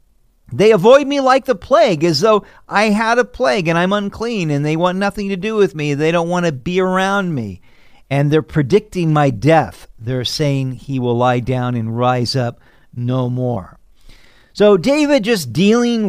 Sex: male